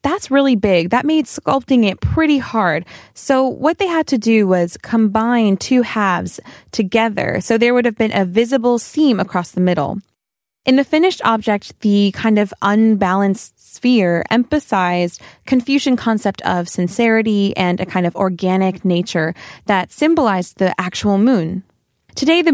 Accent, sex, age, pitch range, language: American, female, 20-39, 185-245 Hz, Korean